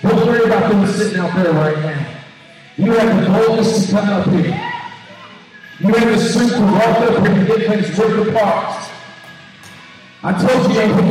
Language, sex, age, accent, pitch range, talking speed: English, male, 50-69, American, 195-235 Hz, 190 wpm